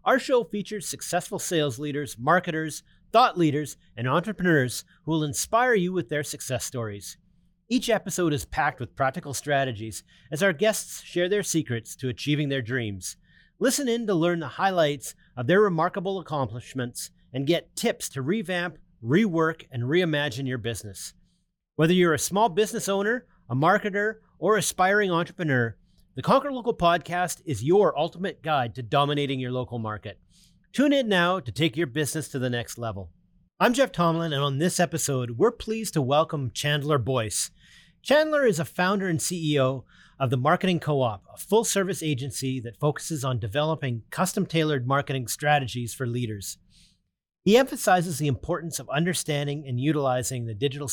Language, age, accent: English, 30-49, American